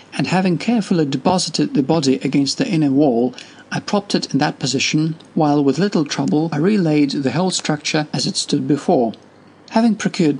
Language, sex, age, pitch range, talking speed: English, male, 50-69, 135-190 Hz, 180 wpm